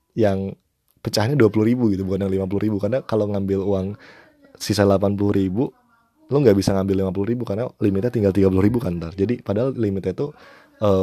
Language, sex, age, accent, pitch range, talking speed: Indonesian, male, 20-39, native, 95-115 Hz, 195 wpm